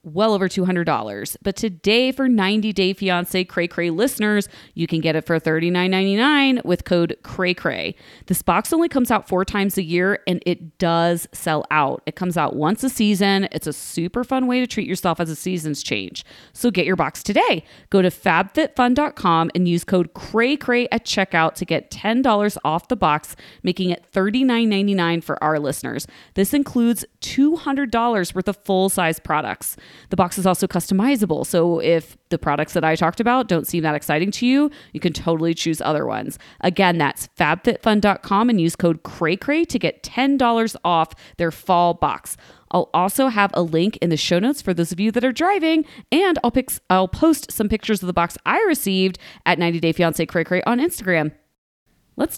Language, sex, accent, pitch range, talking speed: English, female, American, 170-230 Hz, 190 wpm